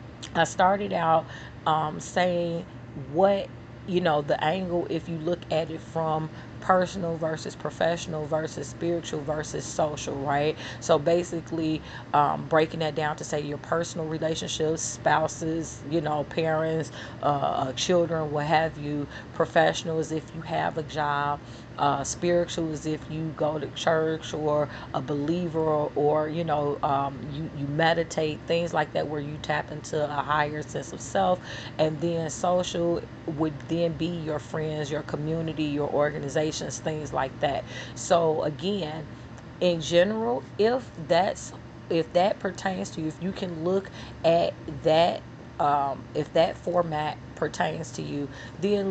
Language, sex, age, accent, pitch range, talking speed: English, female, 40-59, American, 150-170 Hz, 150 wpm